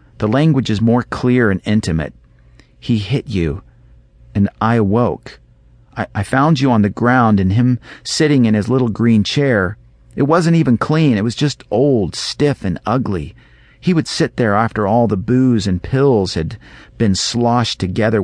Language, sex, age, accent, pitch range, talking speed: English, male, 40-59, American, 90-125 Hz, 175 wpm